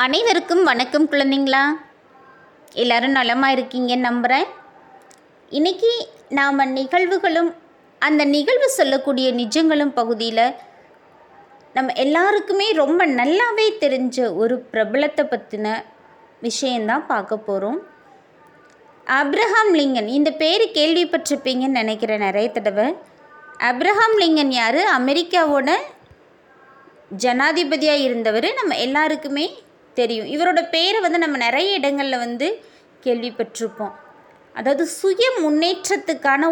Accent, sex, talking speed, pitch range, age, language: Indian, female, 85 wpm, 250-335 Hz, 20-39, English